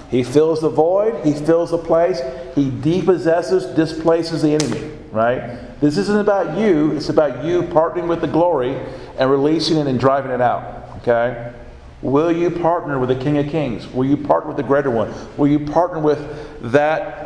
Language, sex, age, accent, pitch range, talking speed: English, male, 50-69, American, 130-165 Hz, 185 wpm